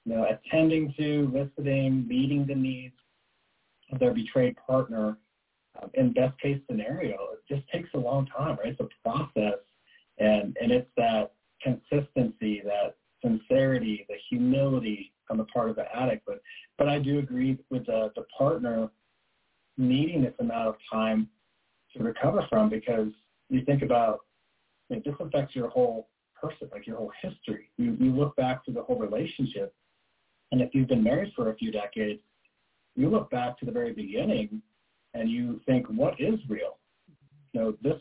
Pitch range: 115-150 Hz